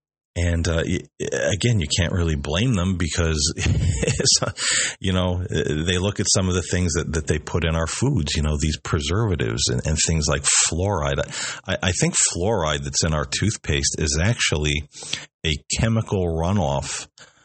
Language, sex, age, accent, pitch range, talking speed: English, male, 40-59, American, 75-90 Hz, 160 wpm